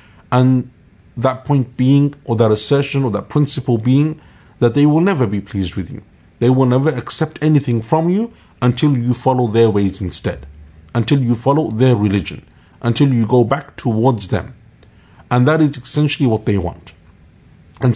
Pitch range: 110-140 Hz